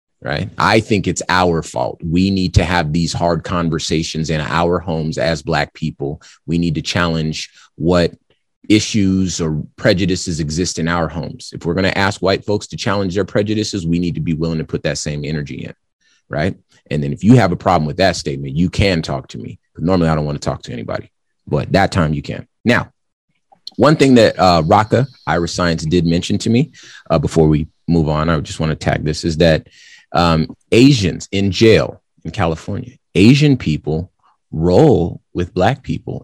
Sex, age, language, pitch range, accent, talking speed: male, 30-49, English, 80-100 Hz, American, 195 wpm